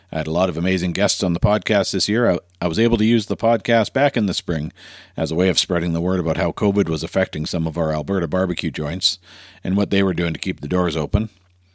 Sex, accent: male, American